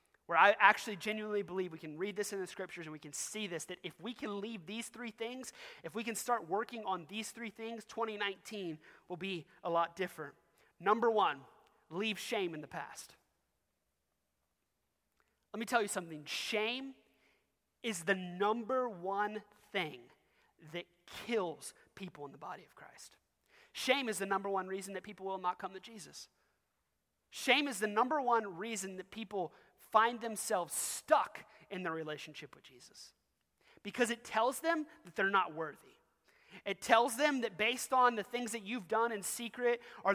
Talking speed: 175 wpm